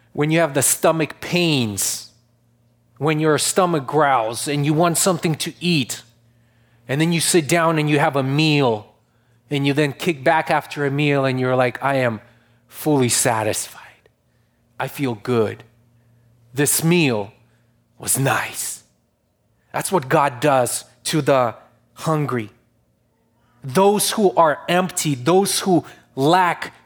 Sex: male